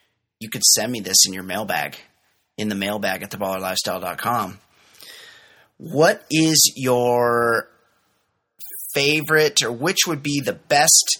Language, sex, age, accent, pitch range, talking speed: English, male, 30-49, American, 105-135 Hz, 125 wpm